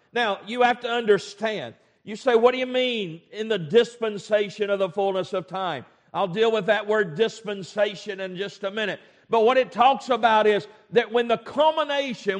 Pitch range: 205-250 Hz